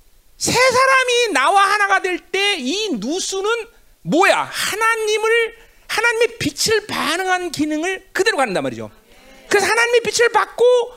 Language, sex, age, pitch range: Korean, male, 40-59, 335-460 Hz